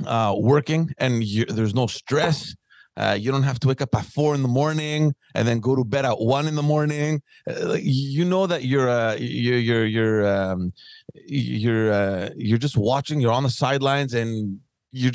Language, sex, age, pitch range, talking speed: English, male, 30-49, 110-140 Hz, 195 wpm